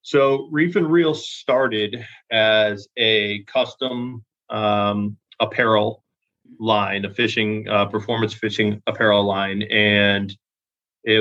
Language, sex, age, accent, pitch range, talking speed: English, male, 30-49, American, 105-115 Hz, 105 wpm